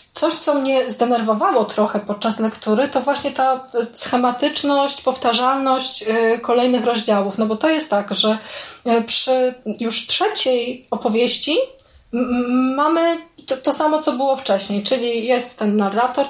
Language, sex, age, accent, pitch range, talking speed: Polish, female, 20-39, native, 220-260 Hz, 125 wpm